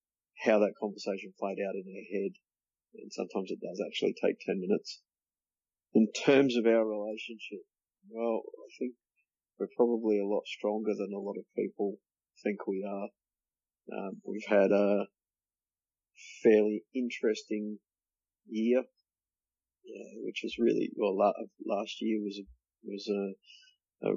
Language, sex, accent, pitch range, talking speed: English, male, Australian, 100-115 Hz, 140 wpm